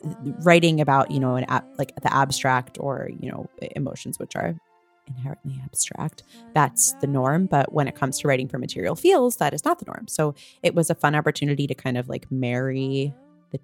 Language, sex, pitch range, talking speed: English, female, 135-160 Hz, 200 wpm